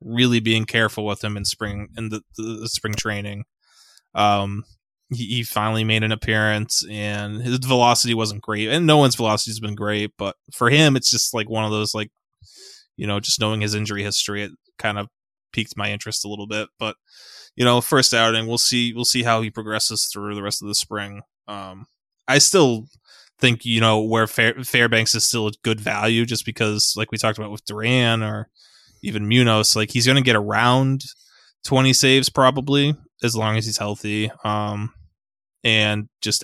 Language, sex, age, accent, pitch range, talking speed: English, male, 20-39, American, 105-120 Hz, 190 wpm